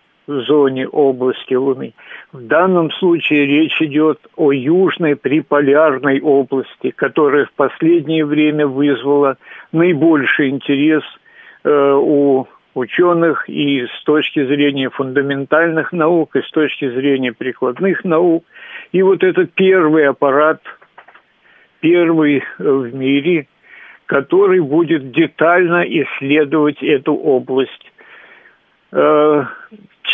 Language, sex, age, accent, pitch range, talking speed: Russian, male, 50-69, native, 140-170 Hz, 95 wpm